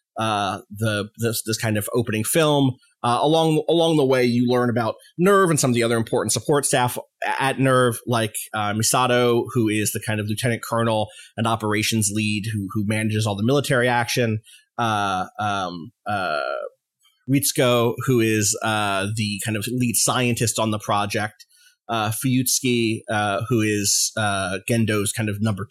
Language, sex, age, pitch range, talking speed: English, male, 30-49, 110-145 Hz, 170 wpm